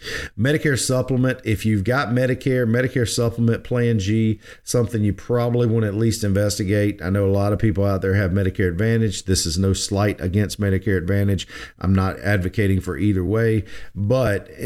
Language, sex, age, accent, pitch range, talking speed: English, male, 50-69, American, 95-120 Hz, 175 wpm